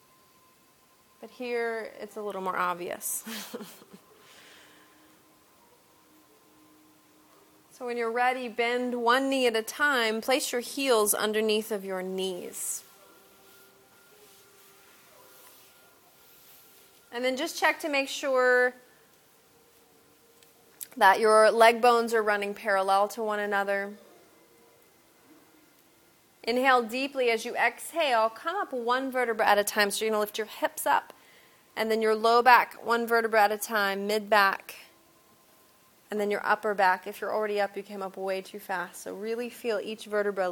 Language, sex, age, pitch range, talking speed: English, female, 30-49, 200-240 Hz, 135 wpm